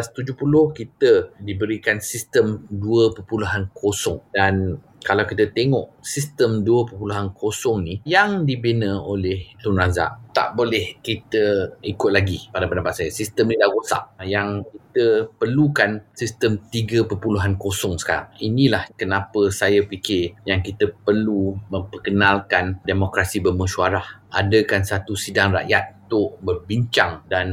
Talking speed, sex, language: 115 wpm, male, Malay